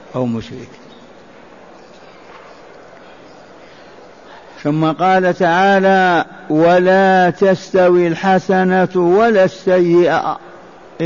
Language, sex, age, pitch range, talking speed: Arabic, male, 50-69, 180-205 Hz, 55 wpm